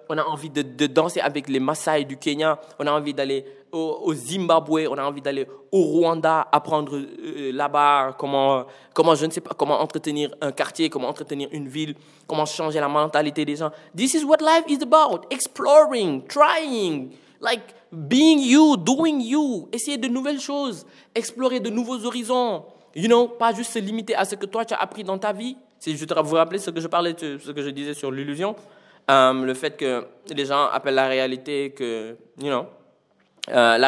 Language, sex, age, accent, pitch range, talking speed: French, male, 20-39, French, 135-180 Hz, 200 wpm